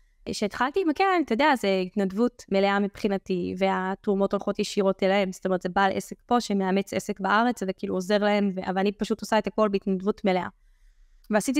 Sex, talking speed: female, 185 wpm